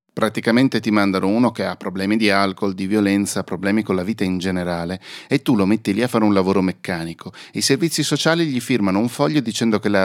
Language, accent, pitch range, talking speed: Italian, native, 95-120 Hz, 220 wpm